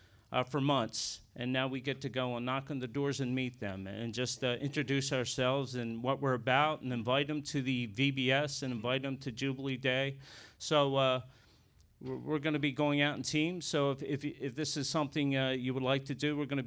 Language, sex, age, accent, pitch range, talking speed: English, male, 40-59, American, 110-140 Hz, 230 wpm